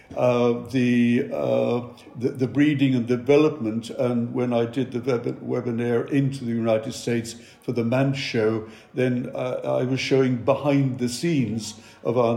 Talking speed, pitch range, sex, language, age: 160 wpm, 115-135 Hz, male, English, 60-79